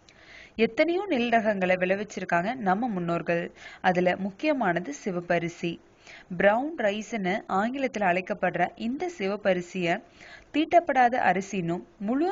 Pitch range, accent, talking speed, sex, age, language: 180-240 Hz, native, 90 wpm, female, 20-39, Tamil